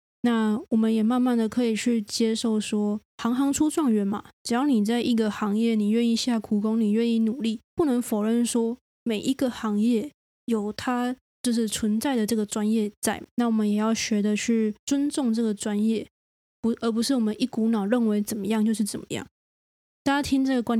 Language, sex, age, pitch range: Chinese, female, 20-39, 215-245 Hz